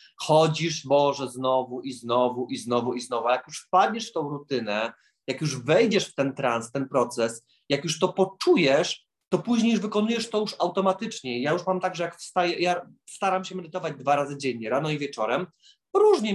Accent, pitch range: native, 140-190 Hz